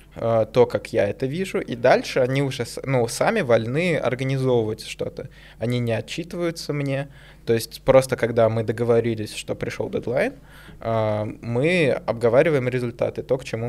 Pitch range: 115-130 Hz